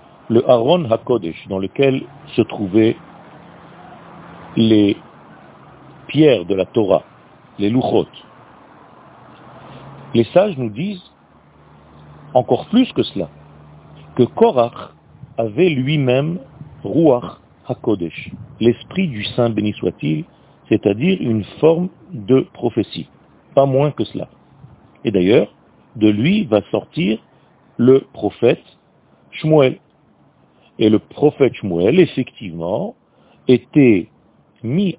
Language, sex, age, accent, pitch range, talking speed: French, male, 50-69, French, 110-165 Hz, 100 wpm